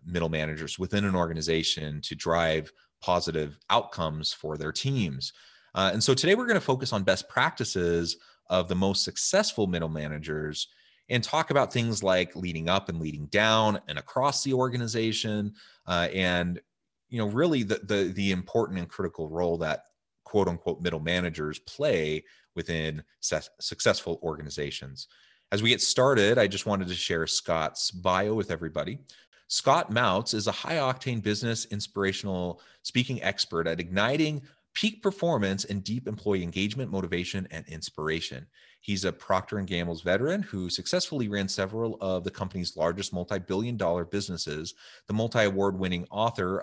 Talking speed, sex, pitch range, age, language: 145 wpm, male, 85-105 Hz, 30-49, English